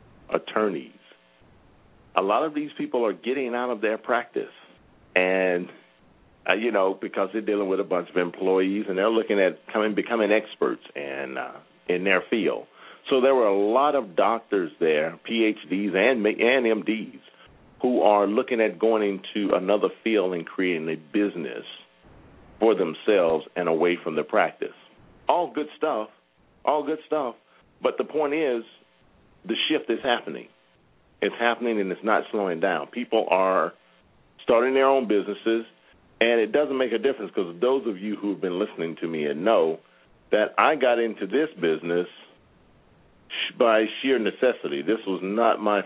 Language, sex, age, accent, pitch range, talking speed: English, male, 50-69, American, 95-120 Hz, 165 wpm